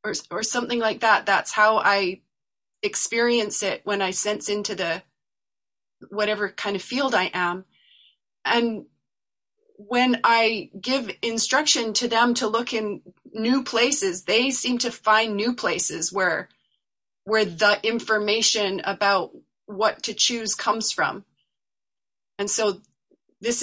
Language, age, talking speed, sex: English, 30-49, 130 wpm, female